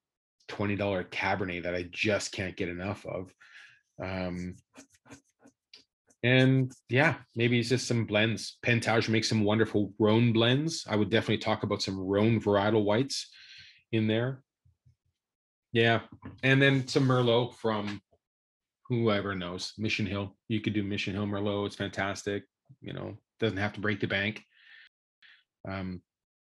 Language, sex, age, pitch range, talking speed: English, male, 30-49, 95-110 Hz, 140 wpm